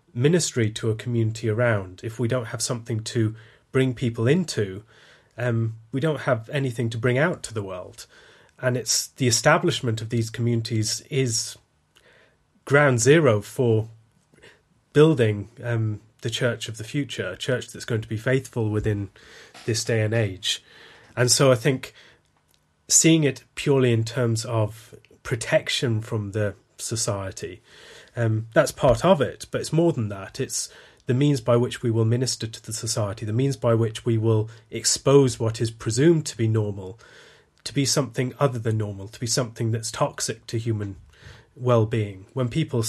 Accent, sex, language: British, male, English